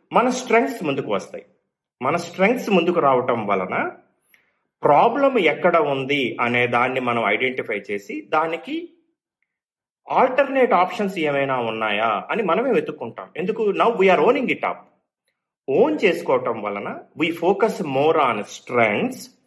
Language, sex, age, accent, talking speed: Telugu, male, 30-49, native, 120 wpm